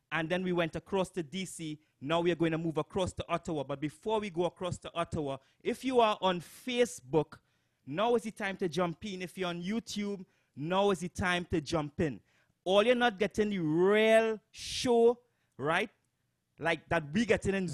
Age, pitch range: 30-49, 165-215 Hz